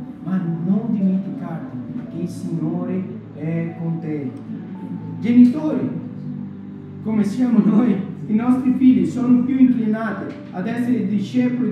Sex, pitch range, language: male, 185-225 Hz, Italian